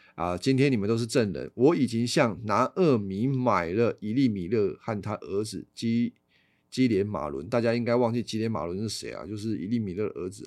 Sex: male